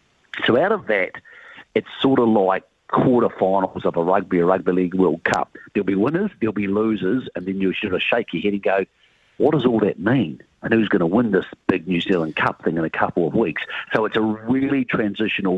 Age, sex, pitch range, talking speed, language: 50-69, male, 95-110 Hz, 225 wpm, English